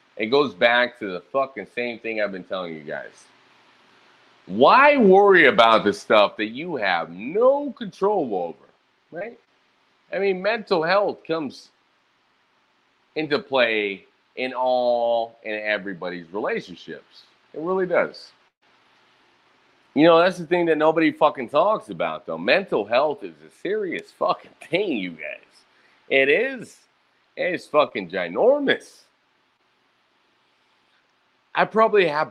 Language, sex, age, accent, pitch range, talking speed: English, male, 30-49, American, 105-165 Hz, 130 wpm